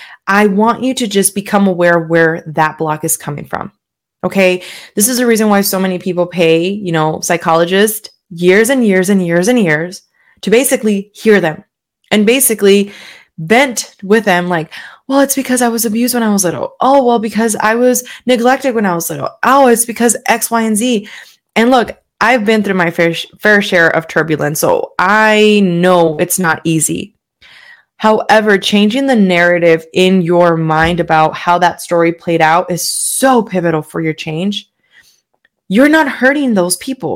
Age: 20-39